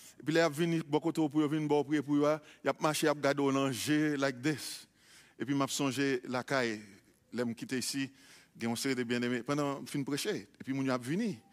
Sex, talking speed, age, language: male, 105 wpm, 50-69, English